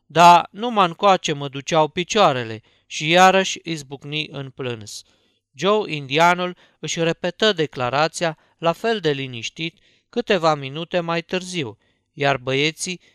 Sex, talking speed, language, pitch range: male, 125 wpm, Romanian, 140-175 Hz